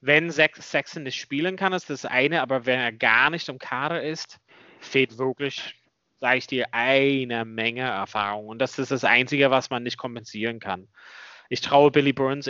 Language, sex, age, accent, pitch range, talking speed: German, male, 30-49, German, 120-140 Hz, 185 wpm